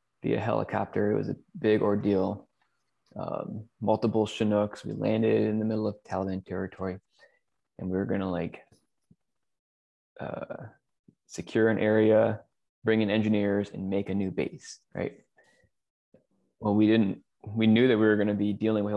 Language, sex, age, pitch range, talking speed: English, male, 20-39, 100-110 Hz, 160 wpm